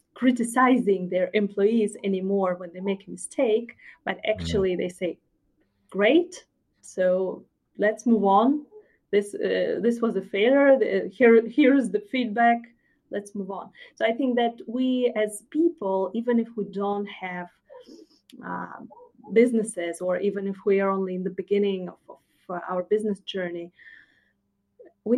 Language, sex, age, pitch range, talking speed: English, female, 30-49, 195-245 Hz, 145 wpm